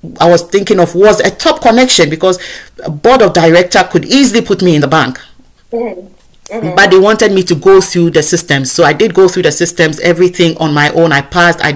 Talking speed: 220 wpm